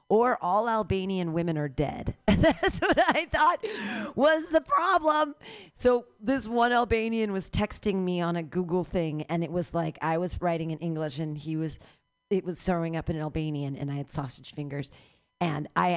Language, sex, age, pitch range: English, female, 40-59, 160-230 Hz